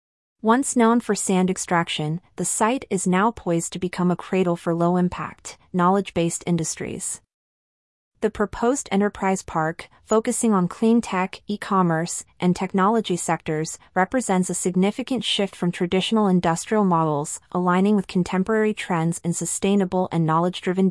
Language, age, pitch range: English, 30-49, 170-205 Hz